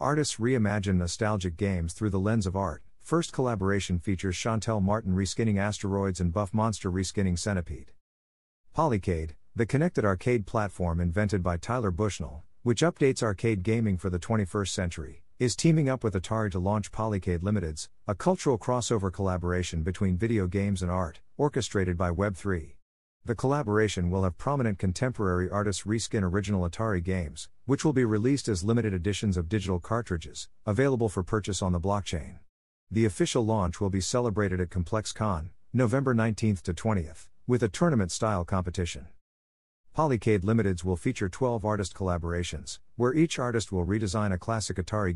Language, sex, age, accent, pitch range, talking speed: English, male, 50-69, American, 90-115 Hz, 155 wpm